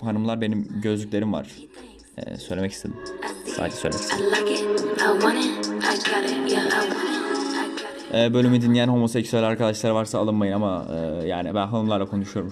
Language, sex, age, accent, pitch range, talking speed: Turkish, male, 30-49, native, 100-130 Hz, 105 wpm